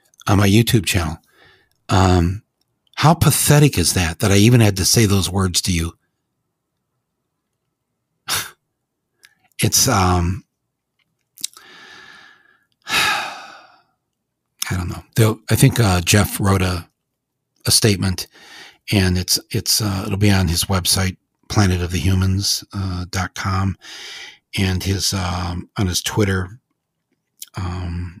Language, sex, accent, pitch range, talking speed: English, male, American, 90-105 Hz, 115 wpm